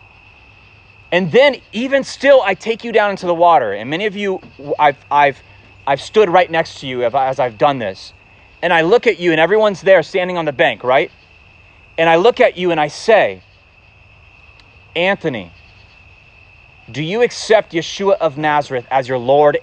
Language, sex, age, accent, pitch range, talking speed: English, male, 30-49, American, 115-185 Hz, 175 wpm